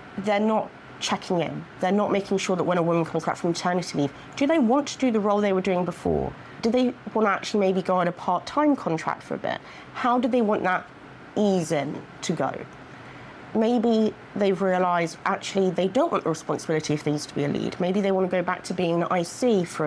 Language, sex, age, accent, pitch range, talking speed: English, female, 30-49, British, 160-205 Hz, 235 wpm